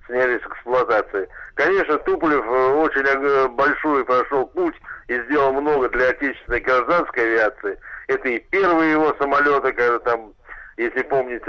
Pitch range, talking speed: 125-155 Hz, 125 wpm